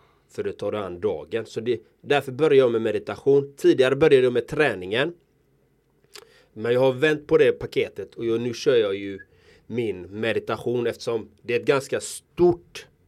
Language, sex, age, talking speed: Swedish, male, 30-49, 175 wpm